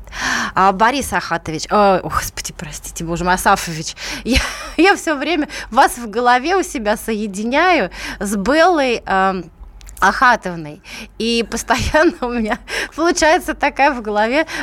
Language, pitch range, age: Russian, 185-260 Hz, 20-39